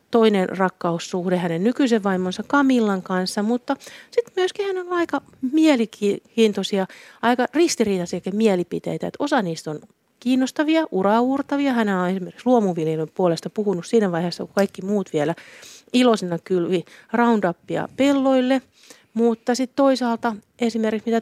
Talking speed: 125 wpm